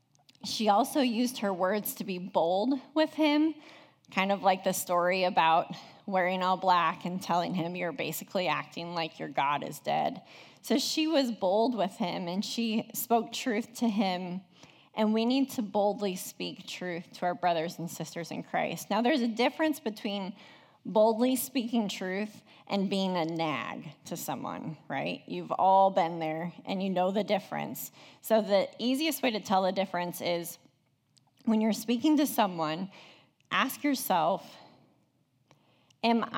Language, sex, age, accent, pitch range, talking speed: English, female, 20-39, American, 180-230 Hz, 160 wpm